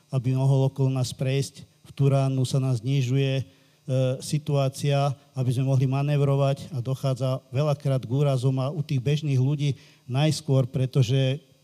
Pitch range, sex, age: 130-145 Hz, male, 50-69